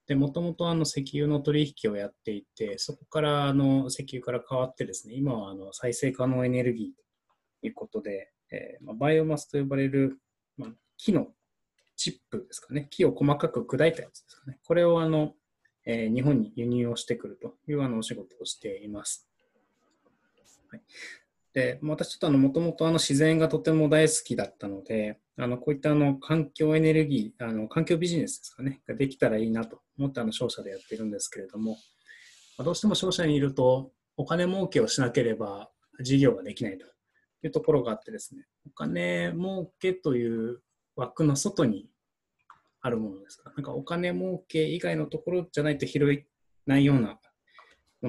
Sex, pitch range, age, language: male, 120-155 Hz, 20-39, Japanese